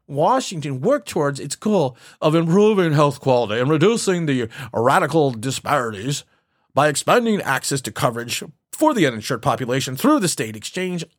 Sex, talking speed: male, 145 wpm